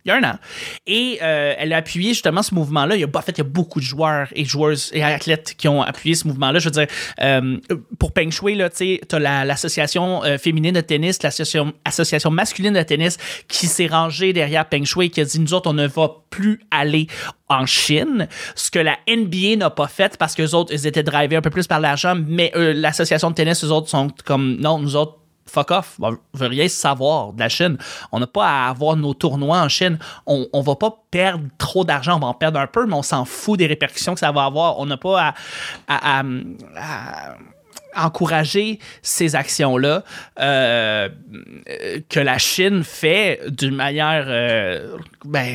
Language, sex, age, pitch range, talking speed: French, male, 30-49, 145-175 Hz, 220 wpm